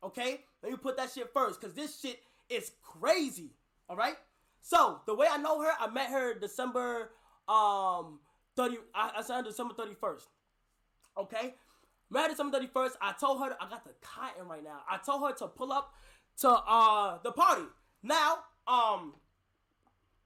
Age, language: 20-39, English